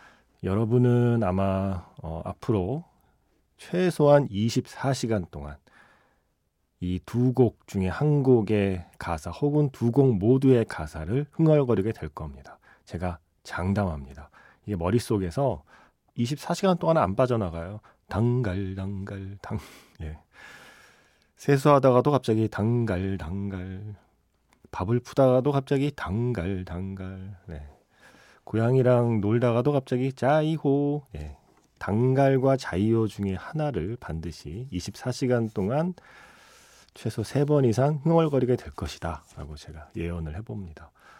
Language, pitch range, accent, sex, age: Korean, 90-130 Hz, native, male, 40-59